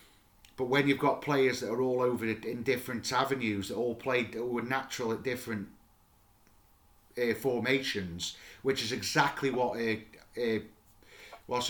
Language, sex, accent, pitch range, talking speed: English, male, British, 110-135 Hz, 150 wpm